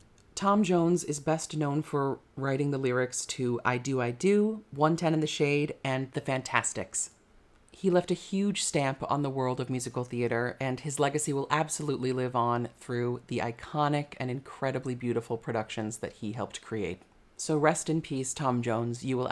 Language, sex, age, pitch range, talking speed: English, female, 30-49, 120-155 Hz, 185 wpm